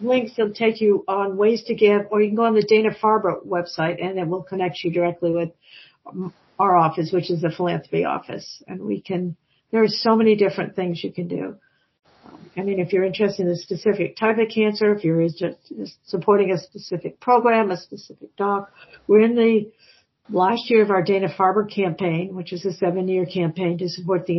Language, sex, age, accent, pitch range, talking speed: English, female, 50-69, American, 180-210 Hz, 200 wpm